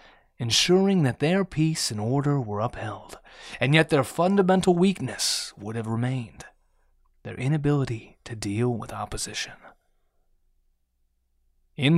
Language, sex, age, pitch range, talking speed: English, male, 30-49, 105-145 Hz, 115 wpm